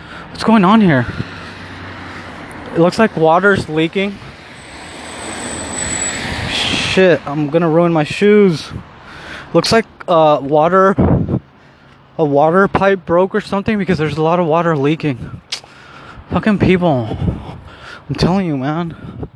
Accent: American